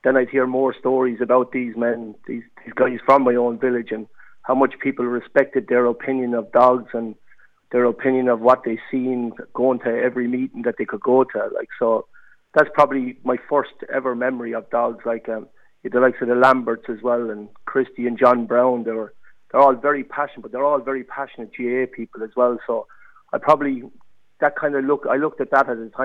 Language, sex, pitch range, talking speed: English, male, 115-130 Hz, 210 wpm